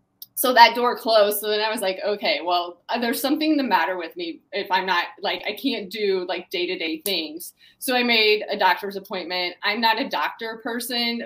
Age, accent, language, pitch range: 20-39, American, English, 185-225 Hz